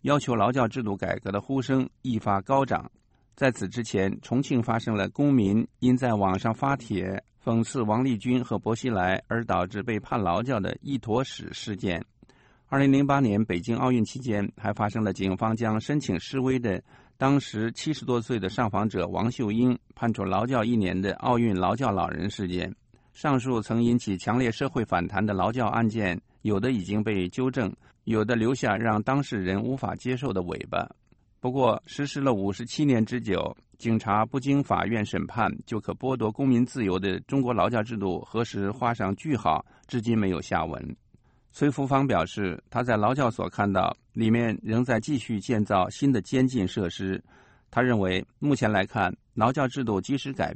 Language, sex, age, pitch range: English, male, 50-69, 100-125 Hz